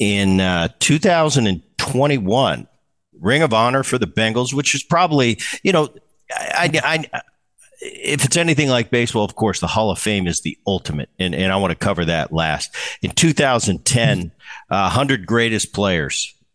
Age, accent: 50-69, American